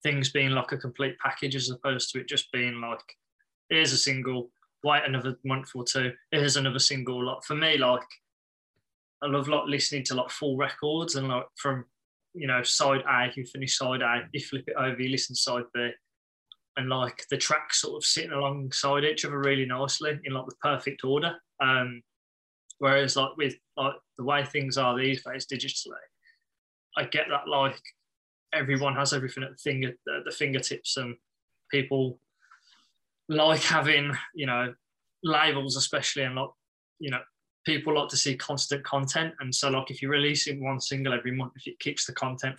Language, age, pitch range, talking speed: English, 20-39, 125-140 Hz, 185 wpm